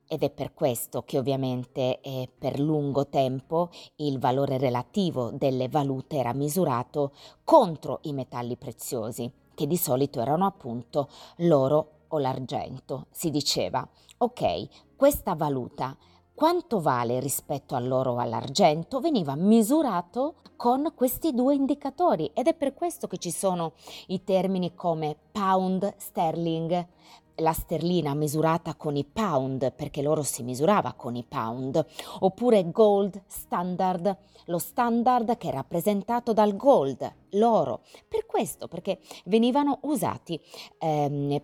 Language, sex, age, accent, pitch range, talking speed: Italian, female, 30-49, native, 135-190 Hz, 125 wpm